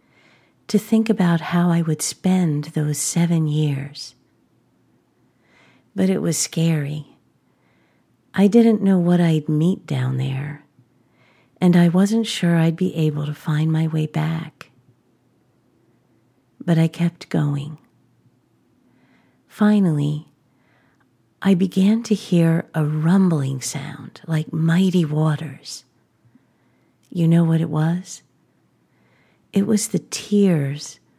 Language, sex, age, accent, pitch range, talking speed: English, female, 50-69, American, 145-180 Hz, 110 wpm